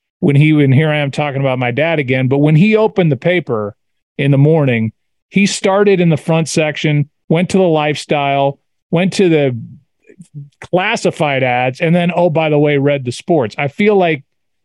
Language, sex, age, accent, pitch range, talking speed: English, male, 40-59, American, 140-165 Hz, 195 wpm